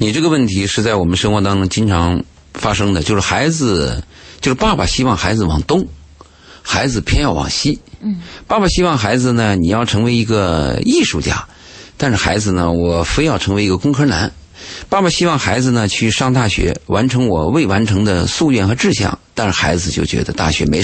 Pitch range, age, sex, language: 85-115 Hz, 50-69, male, Chinese